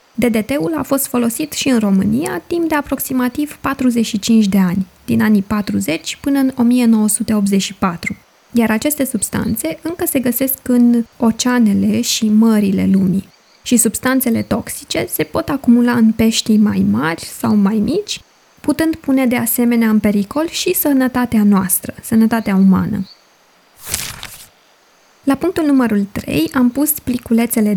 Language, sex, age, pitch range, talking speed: Romanian, female, 20-39, 210-265 Hz, 130 wpm